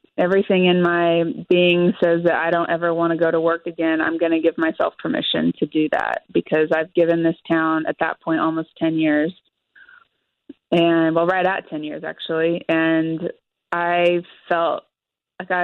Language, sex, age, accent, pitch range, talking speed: English, female, 20-39, American, 165-215 Hz, 175 wpm